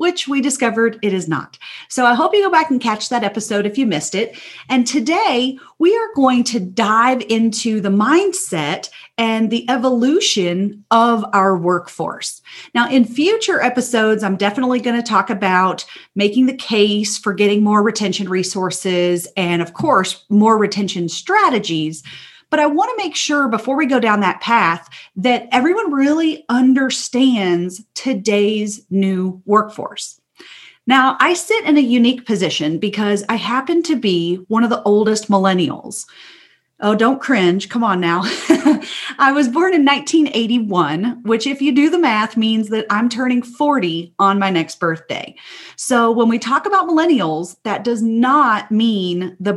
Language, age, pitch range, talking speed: English, 40-59, 195-265 Hz, 160 wpm